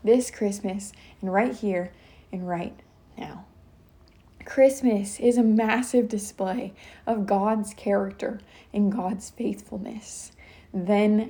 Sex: female